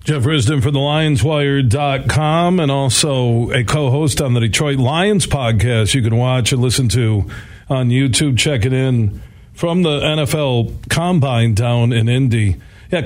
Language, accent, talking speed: English, American, 145 wpm